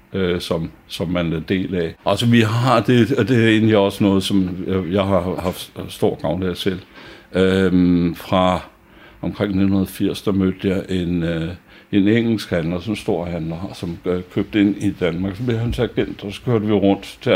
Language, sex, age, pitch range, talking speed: Danish, male, 60-79, 85-100 Hz, 190 wpm